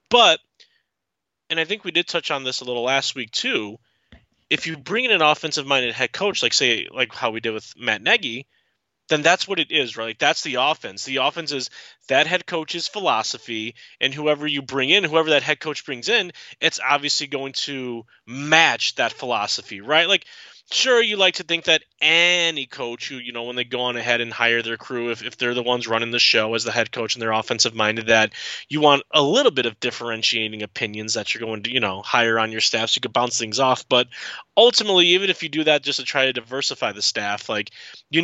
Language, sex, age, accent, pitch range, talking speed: English, male, 20-39, American, 115-160 Hz, 225 wpm